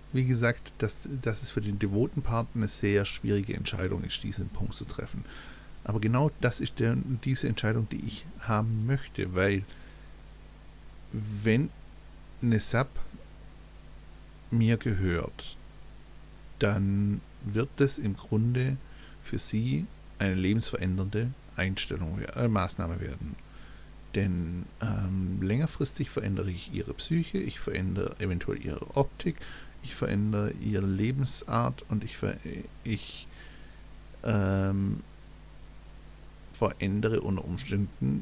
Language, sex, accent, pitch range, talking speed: German, male, German, 95-120 Hz, 110 wpm